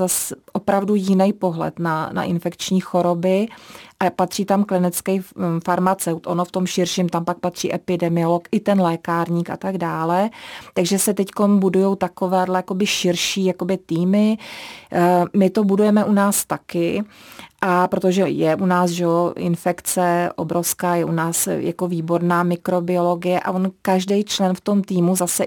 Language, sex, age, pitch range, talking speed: Czech, female, 30-49, 175-190 Hz, 150 wpm